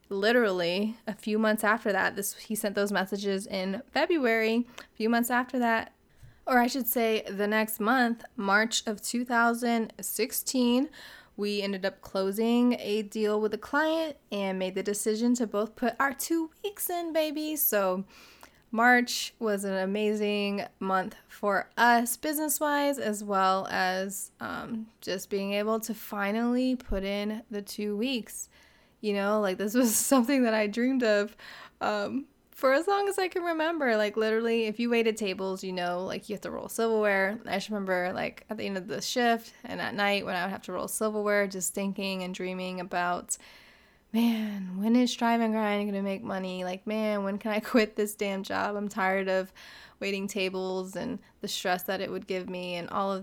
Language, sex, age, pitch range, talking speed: English, female, 20-39, 195-235 Hz, 185 wpm